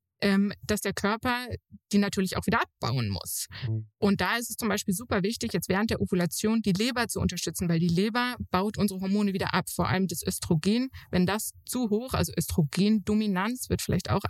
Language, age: German, 20-39